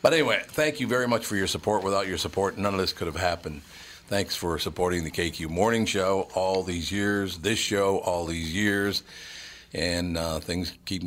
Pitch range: 85-105 Hz